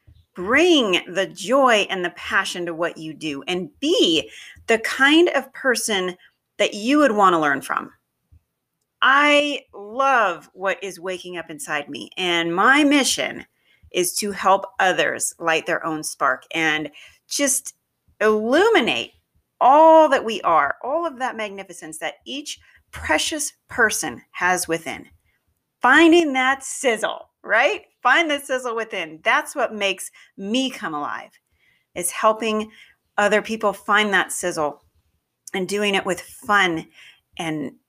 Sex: female